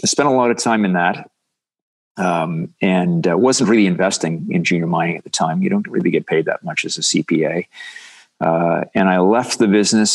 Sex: male